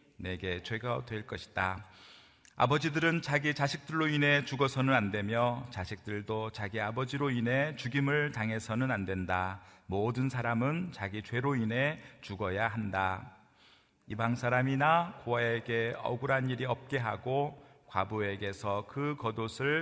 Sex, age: male, 40-59